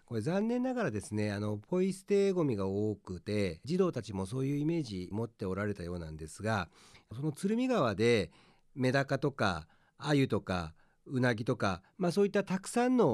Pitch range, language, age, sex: 105-165 Hz, Japanese, 40-59, male